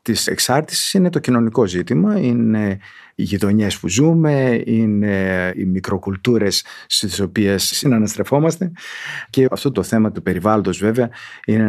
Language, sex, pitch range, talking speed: Greek, male, 95-130 Hz, 130 wpm